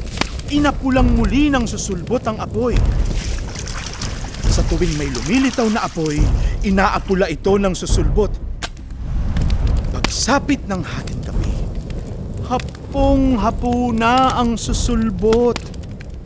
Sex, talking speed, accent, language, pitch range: male, 90 wpm, native, Filipino, 145-220 Hz